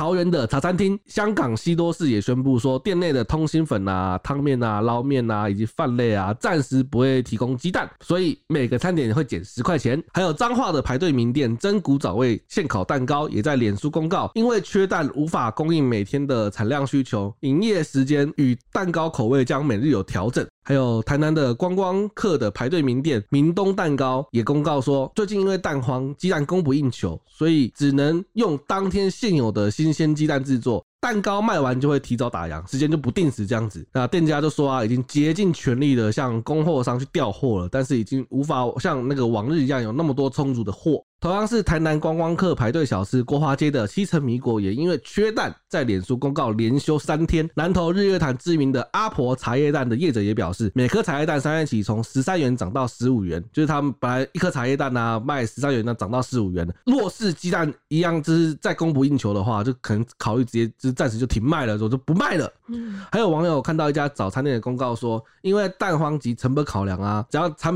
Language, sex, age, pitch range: Chinese, male, 20-39, 120-160 Hz